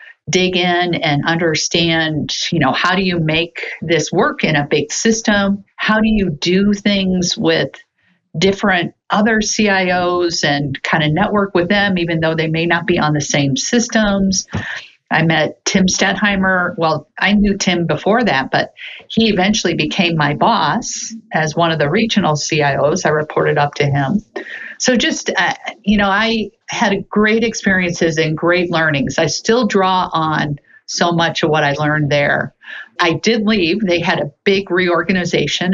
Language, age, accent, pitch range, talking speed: English, 50-69, American, 160-205 Hz, 165 wpm